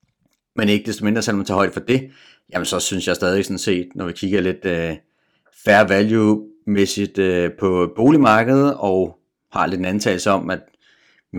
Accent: native